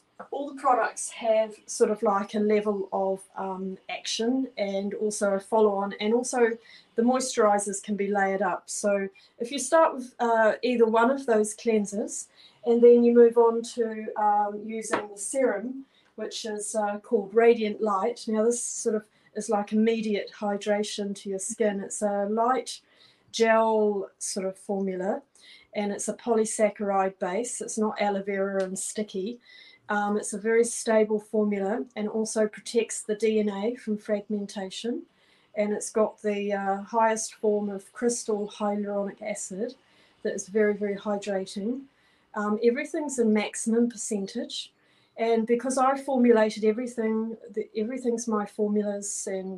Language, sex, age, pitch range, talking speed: English, female, 30-49, 205-230 Hz, 150 wpm